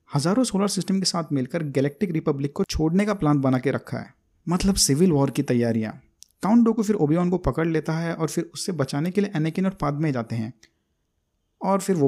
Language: Hindi